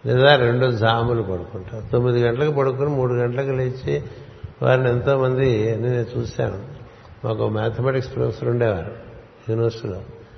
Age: 60-79